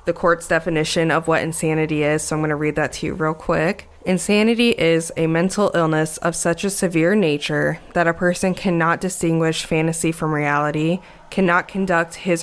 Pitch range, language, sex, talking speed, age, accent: 160-180 Hz, English, female, 185 wpm, 20-39, American